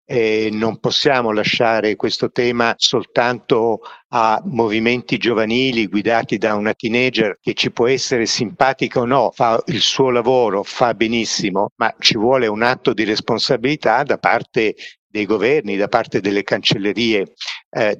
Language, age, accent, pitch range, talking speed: Italian, 50-69, native, 105-130 Hz, 145 wpm